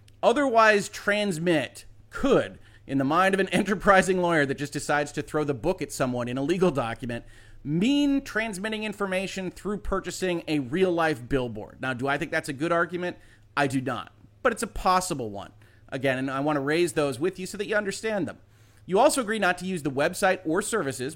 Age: 30-49